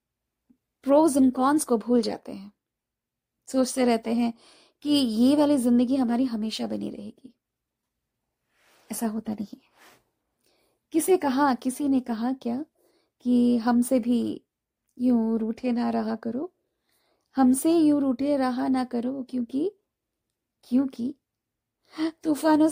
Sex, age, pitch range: female, 20-39, 235-285 Hz